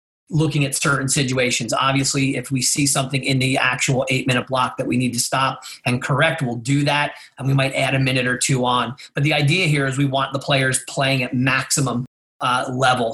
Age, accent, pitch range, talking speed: 30-49, American, 130-145 Hz, 215 wpm